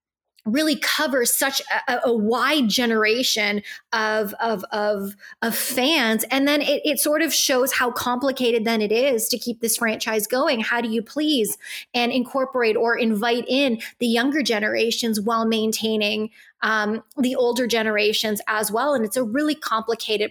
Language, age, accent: English, 20-39, American